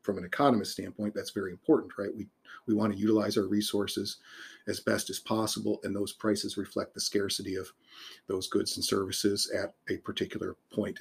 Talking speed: 185 wpm